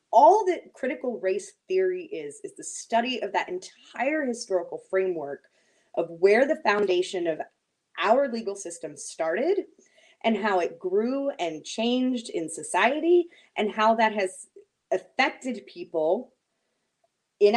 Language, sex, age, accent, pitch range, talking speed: English, female, 20-39, American, 185-265 Hz, 130 wpm